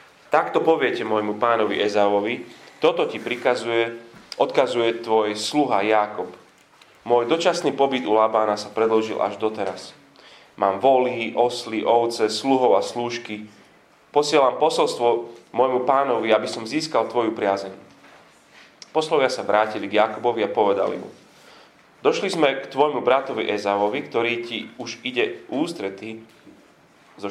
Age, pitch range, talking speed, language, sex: 30-49, 105-130 Hz, 125 wpm, Slovak, male